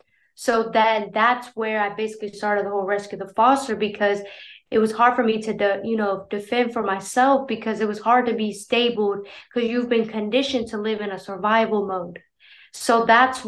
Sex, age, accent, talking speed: female, 20-39, American, 190 wpm